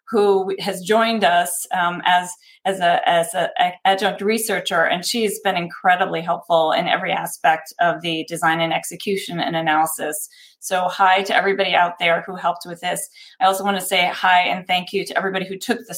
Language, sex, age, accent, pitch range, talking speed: English, female, 30-49, American, 175-205 Hz, 190 wpm